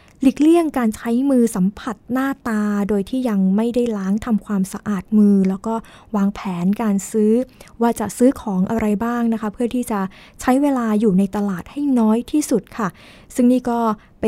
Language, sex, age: Thai, female, 20-39